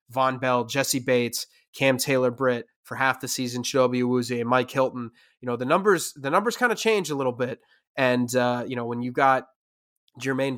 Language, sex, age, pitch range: English, male, 20-39, 120-145 Hz